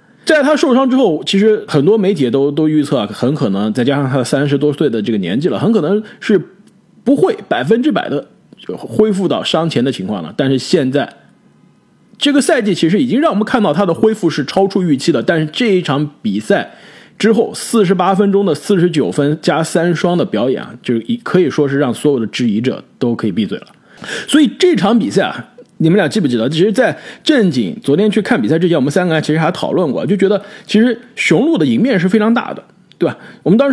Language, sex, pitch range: Chinese, male, 160-220 Hz